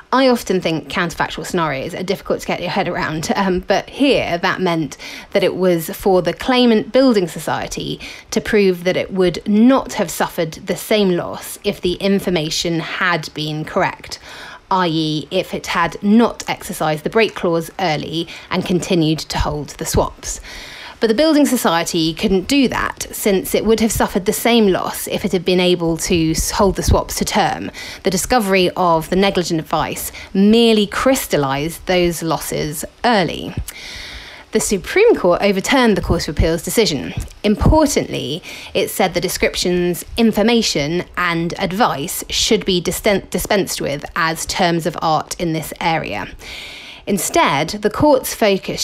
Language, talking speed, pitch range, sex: English, 155 wpm, 170-215 Hz, female